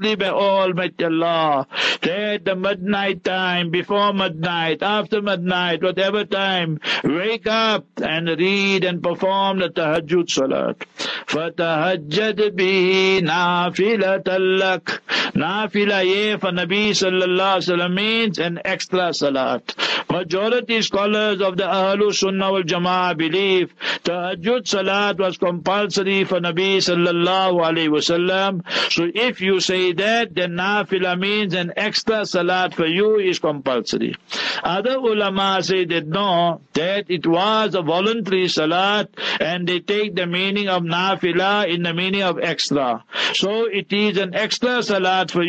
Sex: male